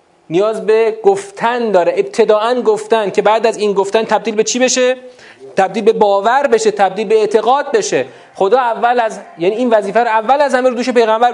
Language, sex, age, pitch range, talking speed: Persian, male, 30-49, 160-245 Hz, 185 wpm